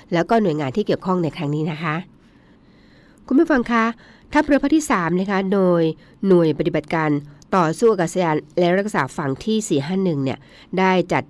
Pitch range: 155-190 Hz